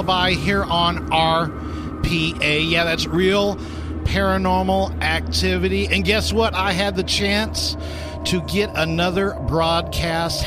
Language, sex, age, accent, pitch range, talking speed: English, male, 50-69, American, 115-175 Hz, 115 wpm